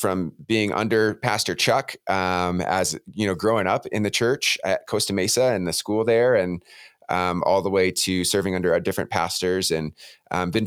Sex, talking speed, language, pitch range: male, 195 wpm, English, 85-105 Hz